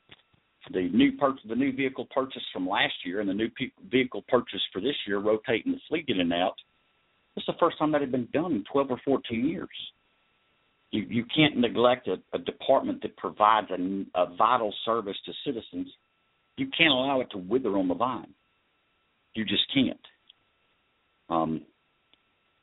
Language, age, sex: English, 50-69, male